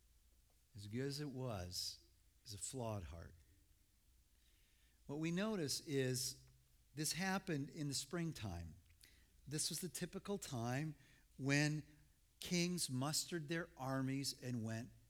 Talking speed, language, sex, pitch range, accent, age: 120 wpm, English, male, 130-170 Hz, American, 50-69